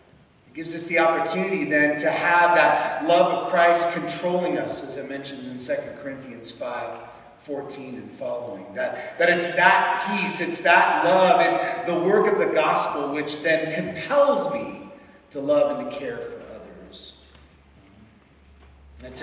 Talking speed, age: 155 wpm, 40-59